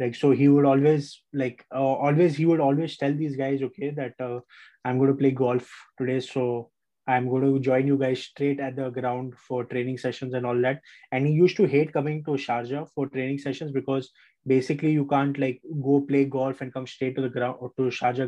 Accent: Indian